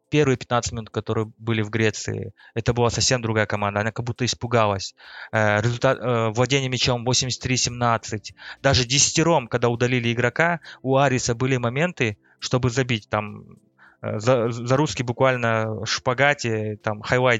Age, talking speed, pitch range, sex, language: 20-39, 130 wpm, 110-130 Hz, male, Russian